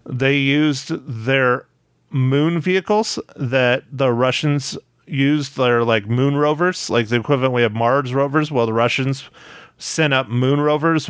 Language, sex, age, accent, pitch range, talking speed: English, male, 30-49, American, 120-145 Hz, 145 wpm